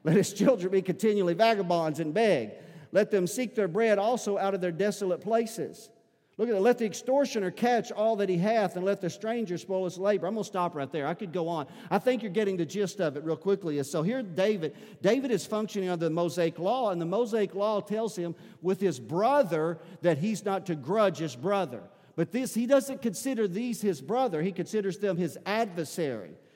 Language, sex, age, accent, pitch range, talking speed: English, male, 50-69, American, 175-225 Hz, 215 wpm